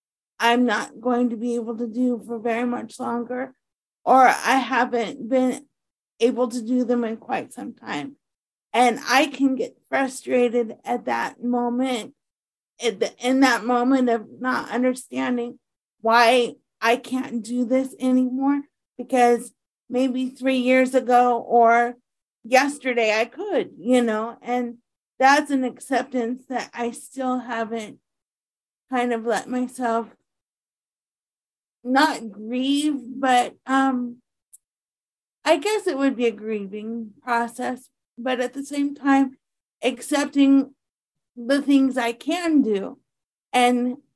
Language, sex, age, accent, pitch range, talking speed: English, female, 50-69, American, 245-275 Hz, 125 wpm